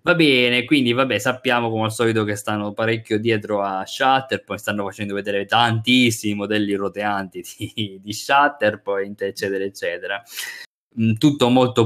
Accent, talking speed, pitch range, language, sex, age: native, 130 wpm, 105-125 Hz, Italian, male, 20-39